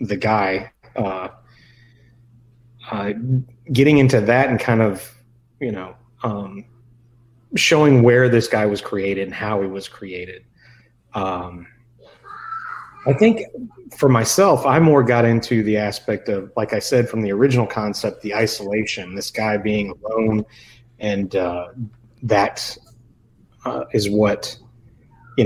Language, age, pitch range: English, 30-49, 105-125 Hz